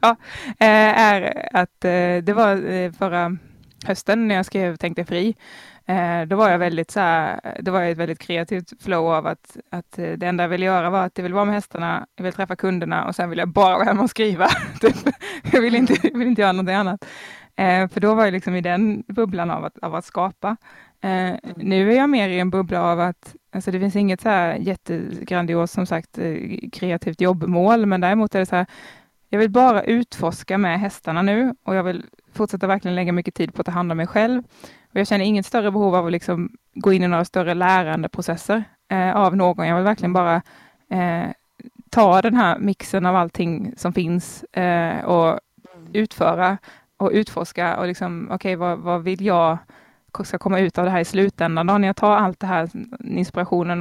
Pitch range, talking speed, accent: 175-205 Hz, 200 wpm, Swedish